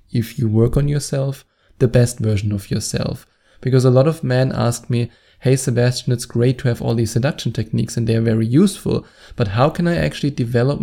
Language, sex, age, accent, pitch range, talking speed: English, male, 20-39, German, 115-135 Hz, 210 wpm